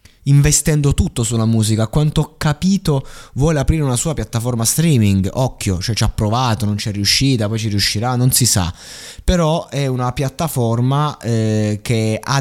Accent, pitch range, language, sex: native, 105-135 Hz, Italian, male